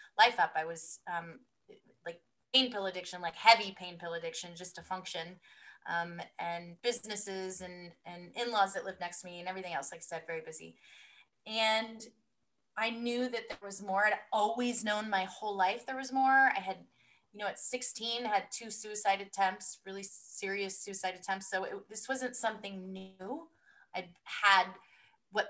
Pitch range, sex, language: 180-220 Hz, female, English